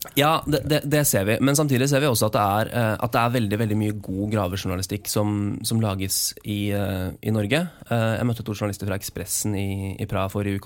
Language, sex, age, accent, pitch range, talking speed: English, male, 20-39, Swedish, 105-120 Hz, 210 wpm